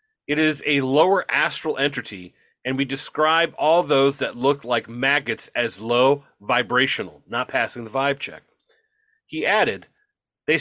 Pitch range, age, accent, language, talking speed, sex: 125-155 Hz, 40-59, American, English, 145 wpm, male